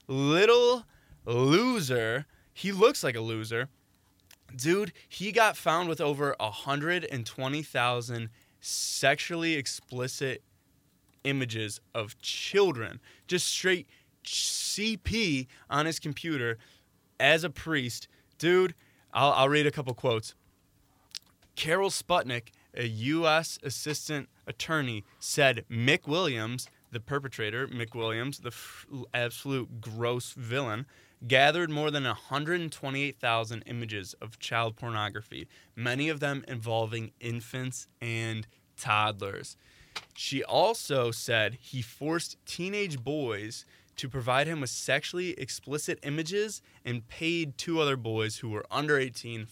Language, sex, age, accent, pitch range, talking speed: English, male, 20-39, American, 115-150 Hz, 110 wpm